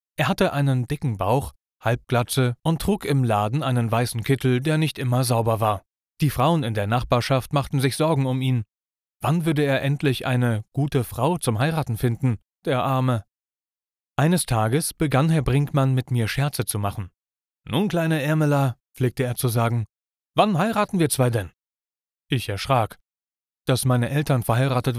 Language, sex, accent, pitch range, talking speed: German, male, German, 115-140 Hz, 165 wpm